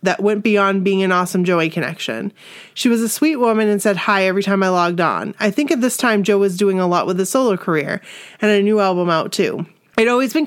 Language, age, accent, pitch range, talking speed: English, 30-49, American, 185-215 Hz, 250 wpm